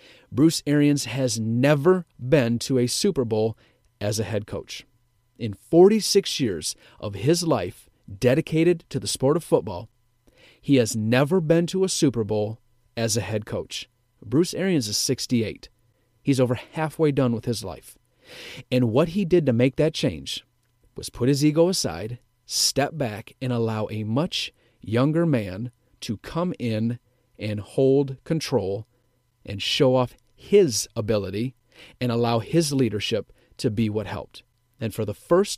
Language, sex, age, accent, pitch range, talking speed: English, male, 40-59, American, 115-140 Hz, 155 wpm